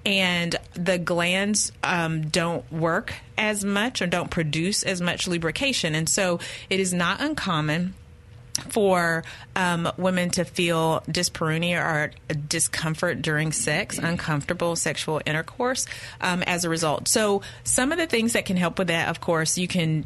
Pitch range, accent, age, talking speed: 155-190 Hz, American, 30-49, 155 wpm